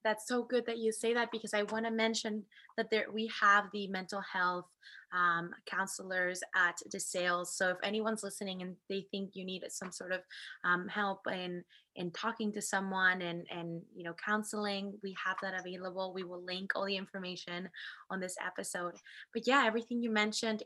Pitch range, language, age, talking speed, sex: 185-215 Hz, English, 20-39, 190 wpm, female